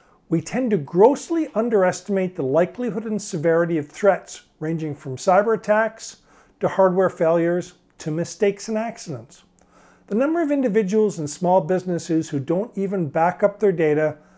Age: 50-69